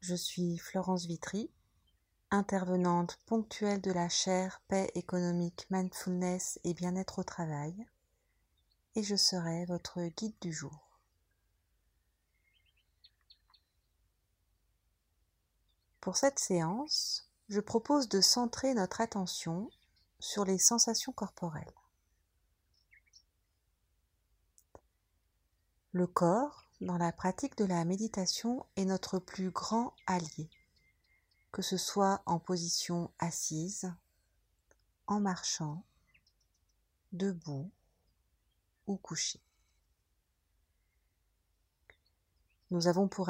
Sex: female